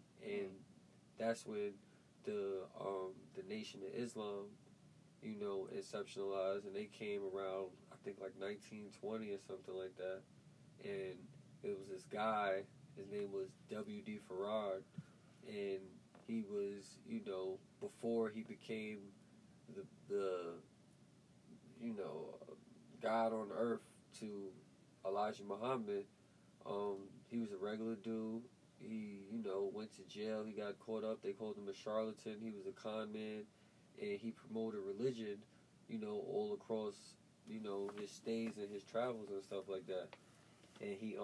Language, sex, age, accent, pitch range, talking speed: English, male, 20-39, American, 105-170 Hz, 145 wpm